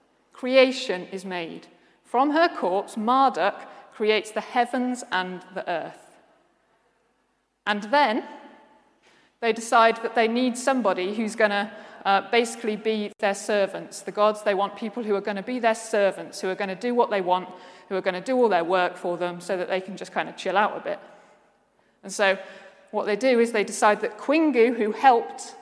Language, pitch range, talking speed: English, 200-255 Hz, 190 wpm